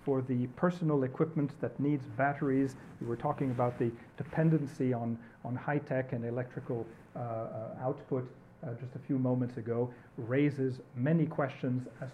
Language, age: English, 40-59